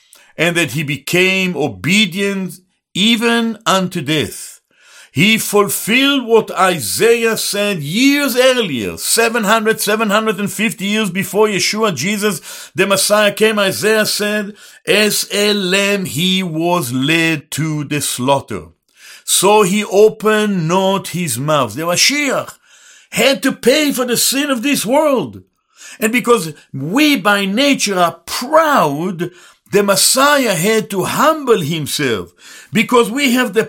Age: 60-79